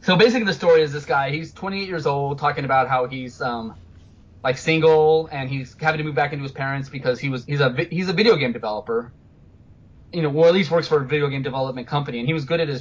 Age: 20-39